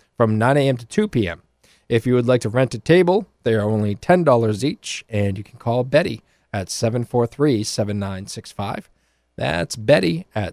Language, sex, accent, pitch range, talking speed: English, male, American, 95-145 Hz, 165 wpm